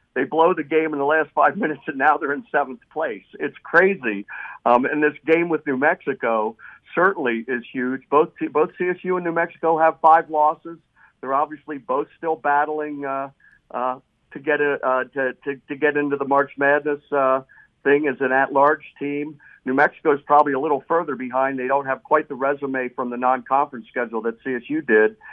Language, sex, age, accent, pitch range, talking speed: English, male, 50-69, American, 125-150 Hz, 195 wpm